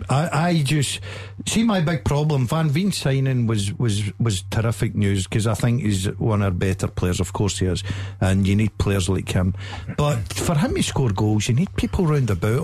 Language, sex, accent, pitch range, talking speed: English, male, British, 105-145 Hz, 215 wpm